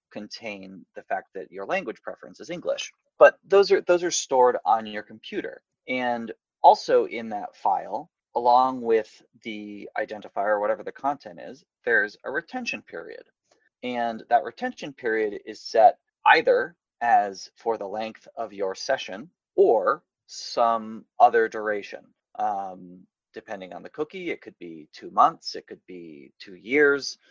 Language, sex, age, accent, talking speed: English, male, 30-49, American, 150 wpm